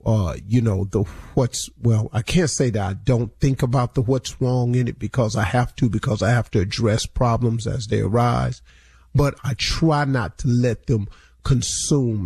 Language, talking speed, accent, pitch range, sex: English, 195 wpm, American, 115-135 Hz, male